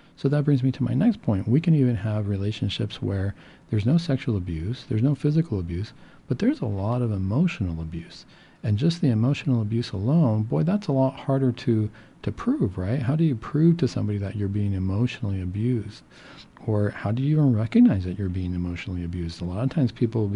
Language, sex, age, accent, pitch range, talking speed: English, male, 50-69, American, 100-135 Hz, 210 wpm